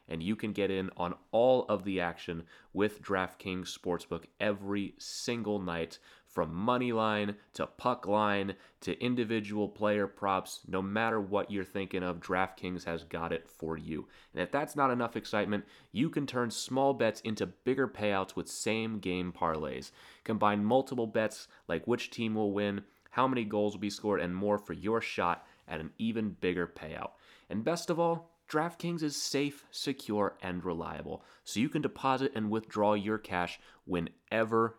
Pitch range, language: 90-120 Hz, English